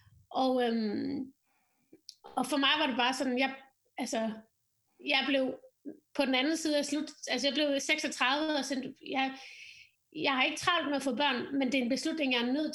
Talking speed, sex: 200 wpm, female